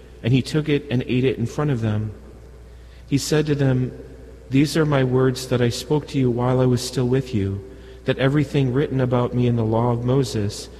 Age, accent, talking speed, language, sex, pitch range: 40-59, American, 220 wpm, English, male, 95-130 Hz